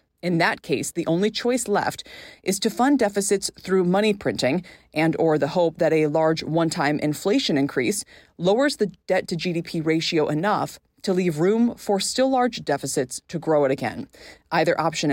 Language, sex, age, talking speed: English, female, 20-39, 165 wpm